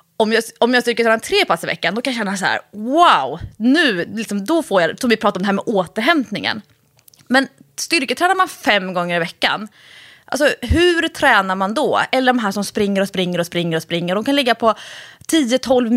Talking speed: 210 wpm